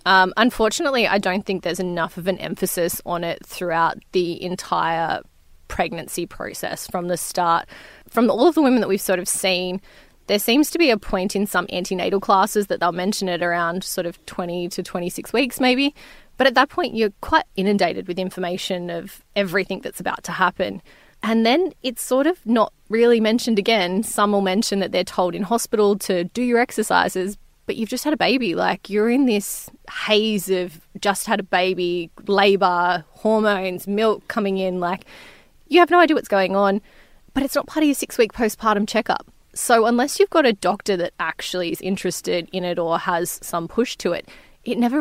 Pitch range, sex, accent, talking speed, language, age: 180-225 Hz, female, Australian, 195 wpm, English, 20-39